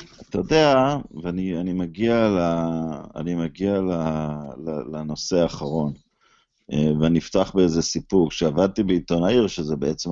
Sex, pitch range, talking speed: male, 85-120 Hz, 120 wpm